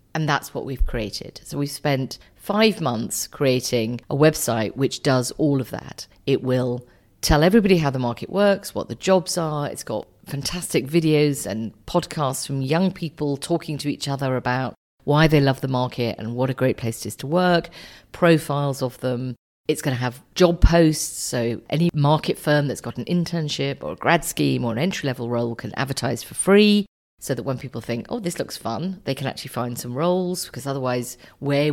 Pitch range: 120-155 Hz